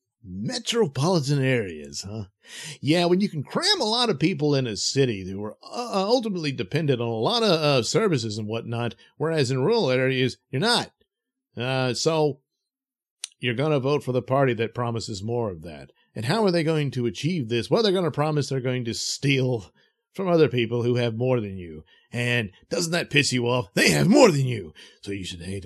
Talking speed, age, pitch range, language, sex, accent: 205 wpm, 50-69, 105-155 Hz, English, male, American